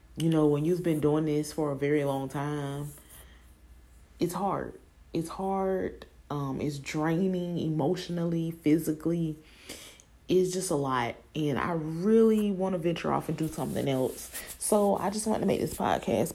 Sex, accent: female, American